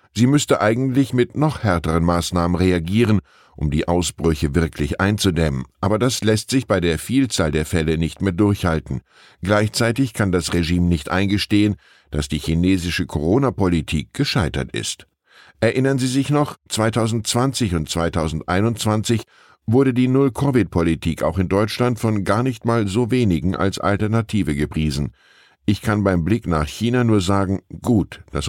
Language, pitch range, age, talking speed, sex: German, 85-115 Hz, 10-29, 145 wpm, male